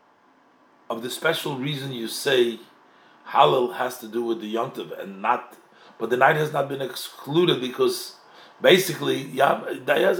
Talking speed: 160 wpm